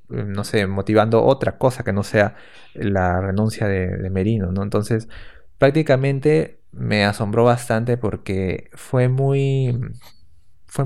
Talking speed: 125 wpm